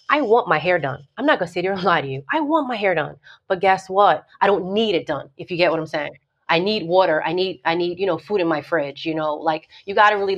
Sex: female